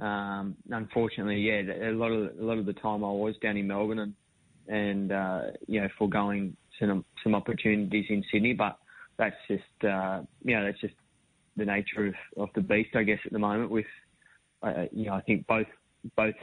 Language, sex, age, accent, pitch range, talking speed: English, male, 20-39, Australian, 100-110 Hz, 200 wpm